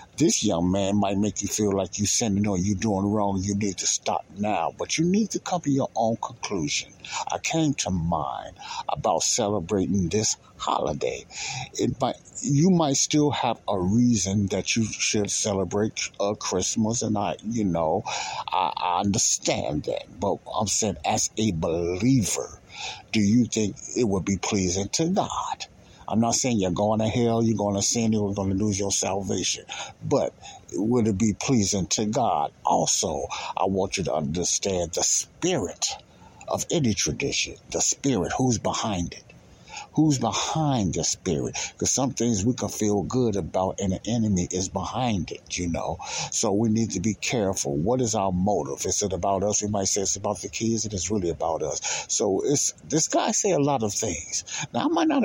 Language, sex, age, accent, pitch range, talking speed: English, male, 60-79, American, 100-120 Hz, 190 wpm